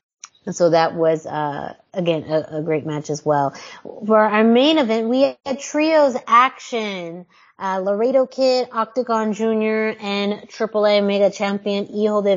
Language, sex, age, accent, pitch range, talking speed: English, female, 20-39, American, 180-235 Hz, 150 wpm